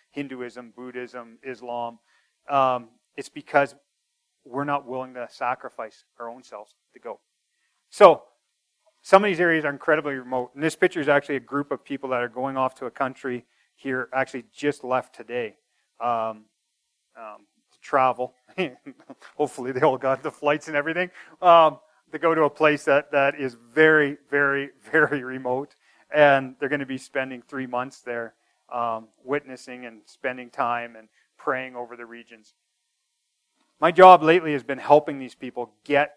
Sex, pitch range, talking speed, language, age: male, 130-160 Hz, 165 wpm, English, 40-59